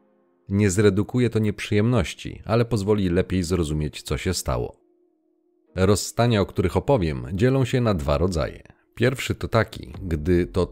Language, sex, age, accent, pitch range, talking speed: Polish, male, 40-59, native, 80-105 Hz, 140 wpm